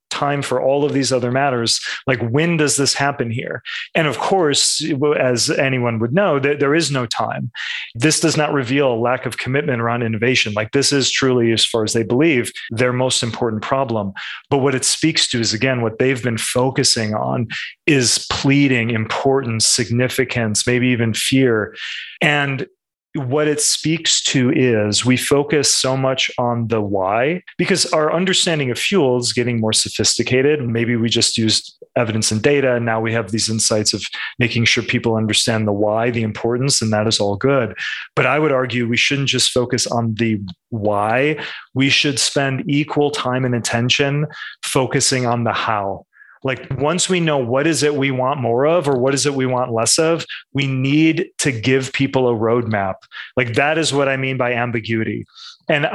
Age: 30-49